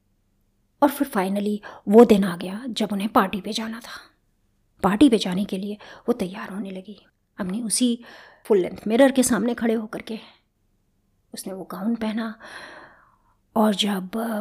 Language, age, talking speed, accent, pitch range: Hindi, 30-49, 160 wpm, native, 205-265 Hz